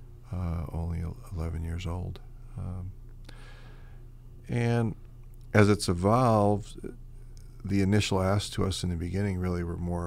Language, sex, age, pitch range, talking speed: English, male, 40-59, 85-115 Hz, 125 wpm